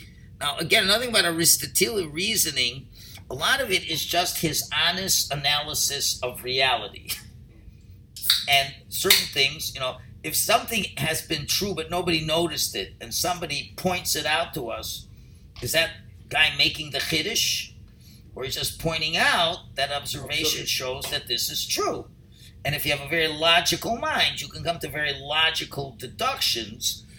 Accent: American